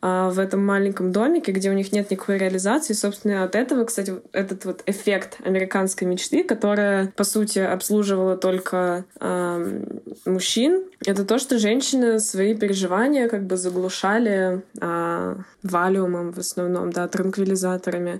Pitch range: 190-230 Hz